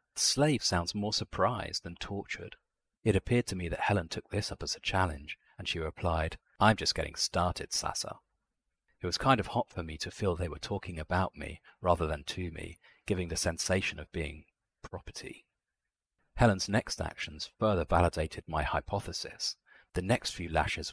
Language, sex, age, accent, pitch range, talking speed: English, male, 40-59, British, 85-105 Hz, 175 wpm